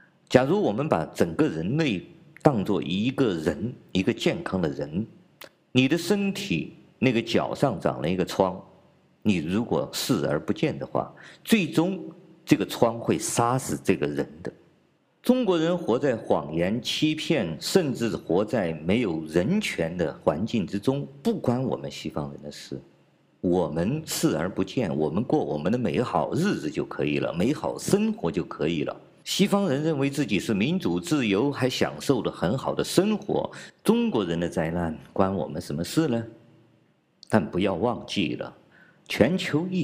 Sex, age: male, 50-69